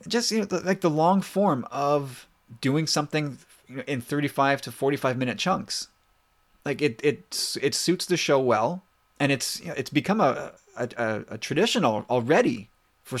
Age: 30-49